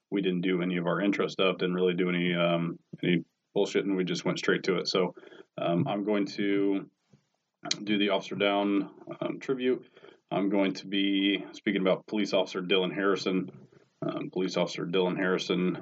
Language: English